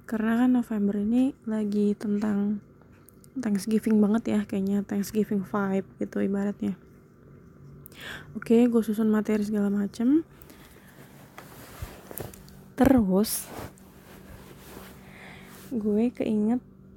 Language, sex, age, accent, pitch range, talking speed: Indonesian, female, 20-39, native, 205-230 Hz, 80 wpm